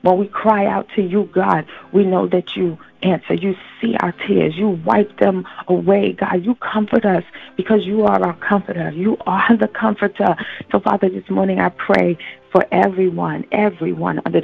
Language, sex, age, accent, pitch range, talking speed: English, female, 40-59, American, 165-200 Hz, 180 wpm